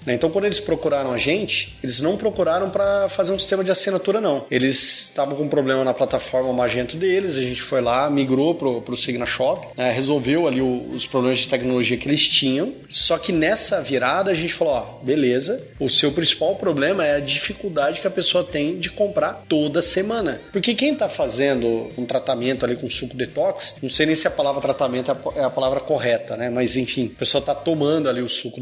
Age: 30-49